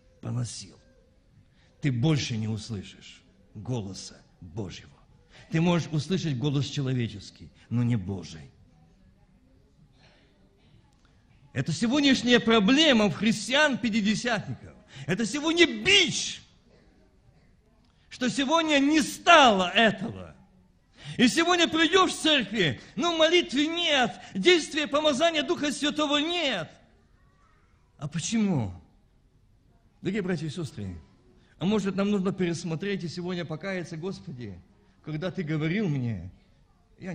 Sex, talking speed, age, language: male, 100 wpm, 50-69, Russian